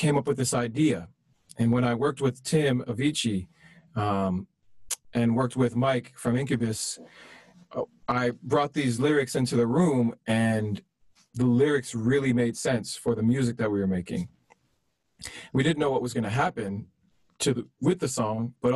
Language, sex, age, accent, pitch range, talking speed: Spanish, male, 40-59, American, 105-125 Hz, 165 wpm